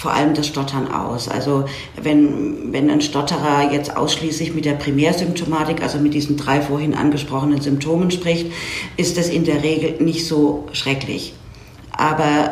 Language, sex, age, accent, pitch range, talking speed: German, female, 50-69, German, 145-165 Hz, 155 wpm